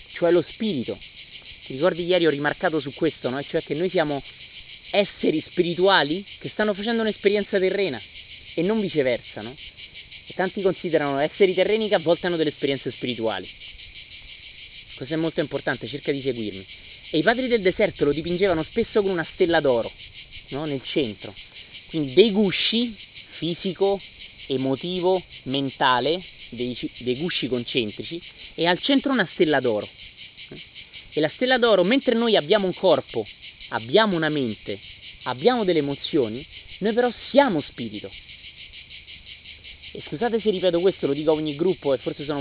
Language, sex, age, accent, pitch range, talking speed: Italian, male, 30-49, native, 115-195 Hz, 150 wpm